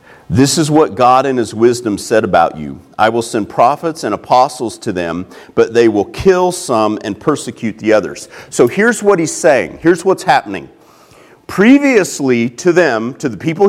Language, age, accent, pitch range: English, 40-59, American, 150-245 Hz